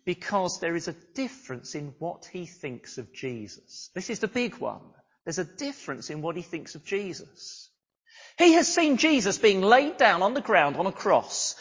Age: 40-59